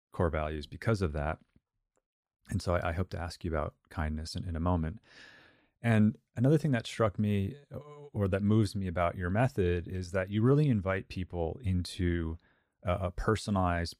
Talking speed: 180 wpm